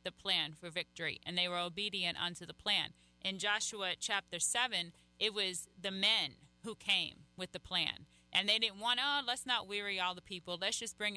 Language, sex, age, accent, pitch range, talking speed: English, female, 30-49, American, 170-210 Hz, 205 wpm